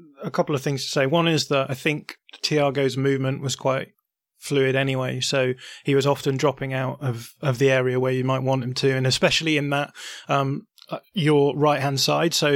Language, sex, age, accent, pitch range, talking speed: English, male, 20-39, British, 130-145 Hz, 205 wpm